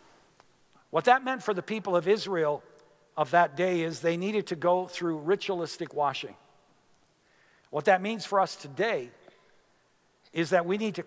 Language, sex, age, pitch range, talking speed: English, male, 60-79, 165-205 Hz, 165 wpm